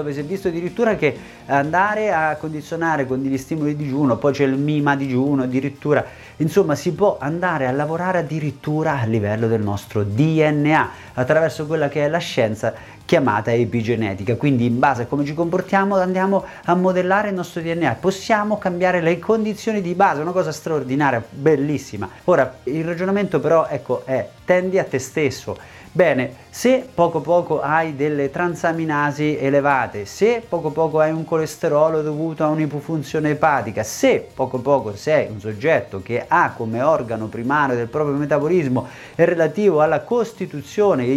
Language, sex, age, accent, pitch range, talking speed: Italian, male, 30-49, native, 130-175 Hz, 160 wpm